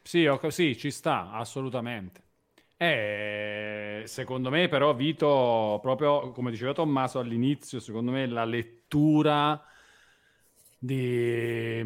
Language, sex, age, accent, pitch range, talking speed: Italian, male, 40-59, native, 115-140 Hz, 105 wpm